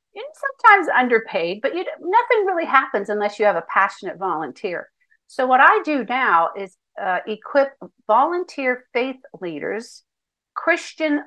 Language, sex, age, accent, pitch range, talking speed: English, female, 50-69, American, 185-270 Hz, 140 wpm